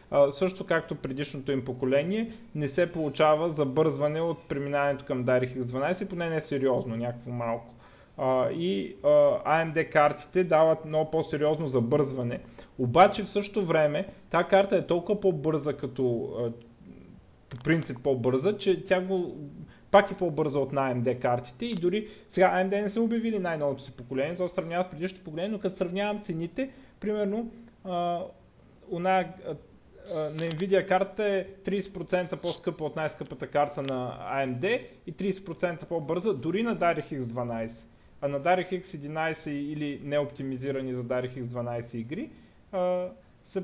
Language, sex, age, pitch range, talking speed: Bulgarian, male, 30-49, 135-180 Hz, 145 wpm